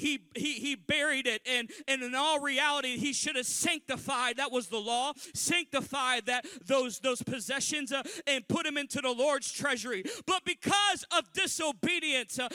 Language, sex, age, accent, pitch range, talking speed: English, male, 40-59, American, 275-340 Hz, 165 wpm